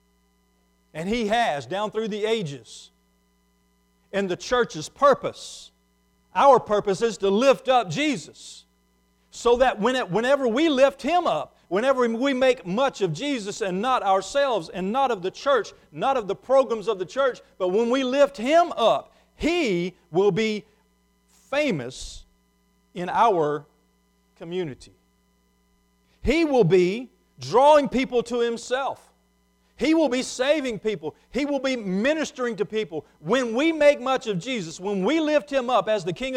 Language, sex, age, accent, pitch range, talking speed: English, male, 40-59, American, 200-270 Hz, 150 wpm